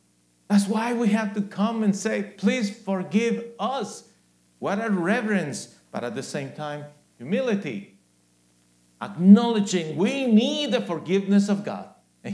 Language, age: English, 50-69